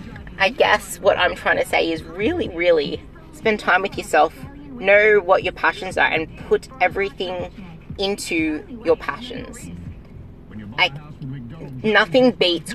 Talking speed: 125 wpm